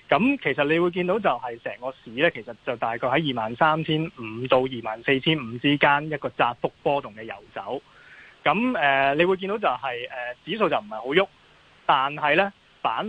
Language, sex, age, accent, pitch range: Chinese, male, 20-39, native, 130-180 Hz